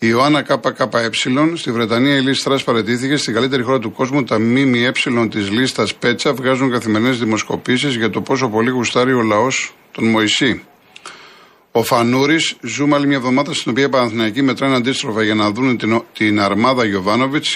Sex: male